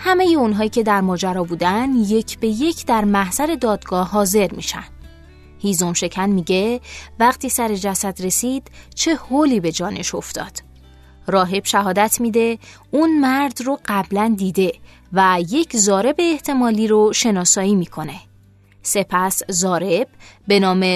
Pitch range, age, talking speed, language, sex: 185-245 Hz, 20-39, 130 wpm, Persian, female